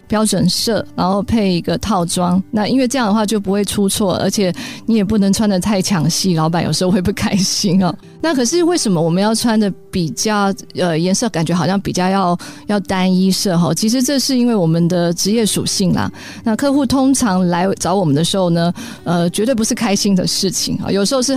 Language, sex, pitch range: Chinese, female, 180-225 Hz